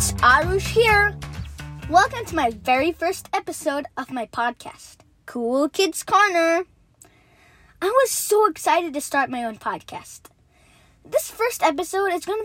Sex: female